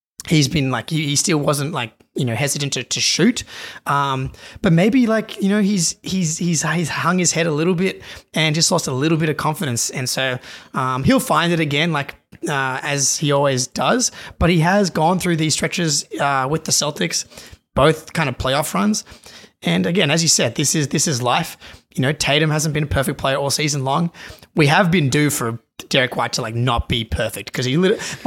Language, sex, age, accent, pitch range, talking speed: English, male, 20-39, Australian, 130-175 Hz, 215 wpm